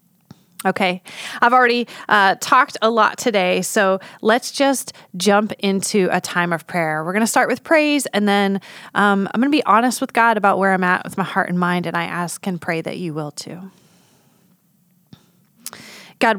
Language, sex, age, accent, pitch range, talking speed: English, female, 30-49, American, 180-210 Hz, 190 wpm